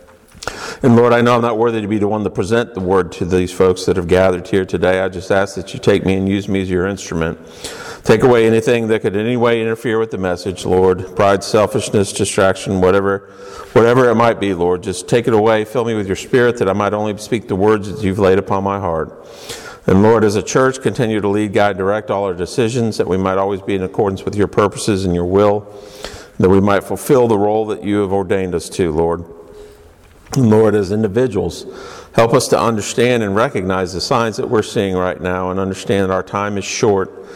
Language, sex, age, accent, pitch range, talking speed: English, male, 50-69, American, 95-110 Hz, 230 wpm